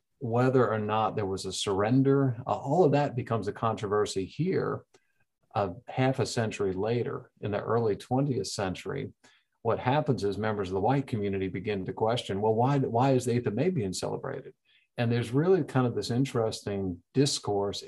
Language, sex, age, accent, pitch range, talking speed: English, male, 50-69, American, 100-125 Hz, 185 wpm